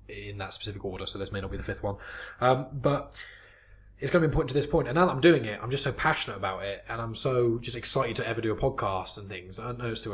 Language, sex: English, male